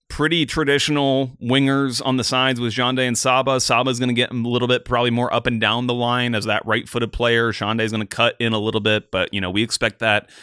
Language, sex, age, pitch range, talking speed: English, male, 30-49, 105-125 Hz, 240 wpm